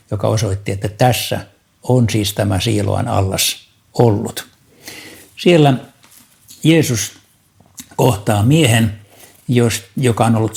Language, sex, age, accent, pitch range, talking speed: Finnish, male, 60-79, native, 105-130 Hz, 95 wpm